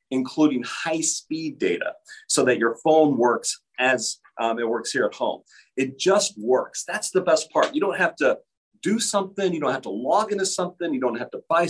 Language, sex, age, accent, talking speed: English, male, 40-59, American, 210 wpm